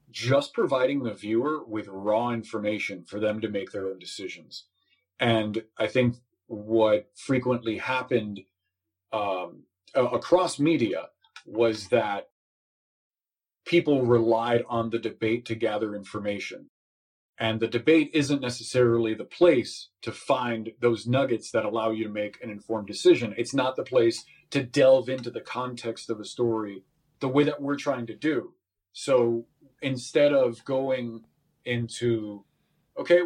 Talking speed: 140 wpm